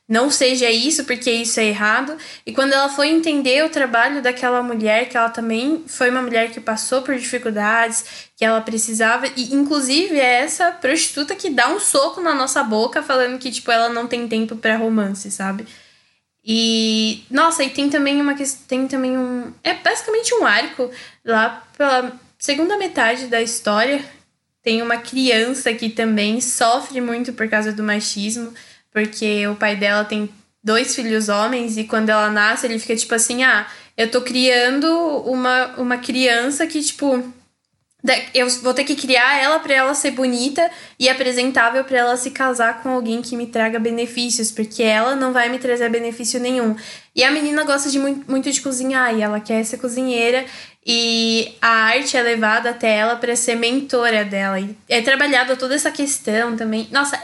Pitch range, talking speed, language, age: 225-270 Hz, 175 wpm, Portuguese, 10-29